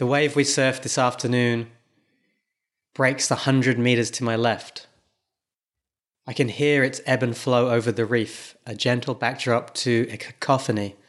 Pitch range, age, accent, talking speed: 115-130 Hz, 20-39, British, 155 wpm